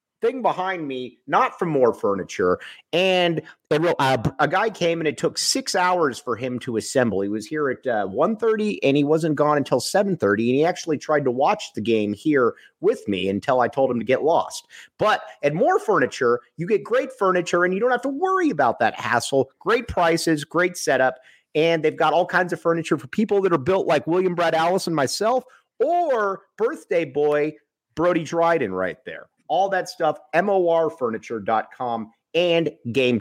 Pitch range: 130-190 Hz